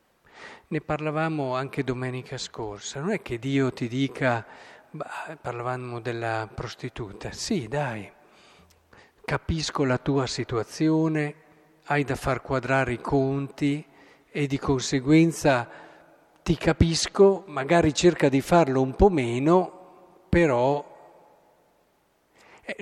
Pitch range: 125-155 Hz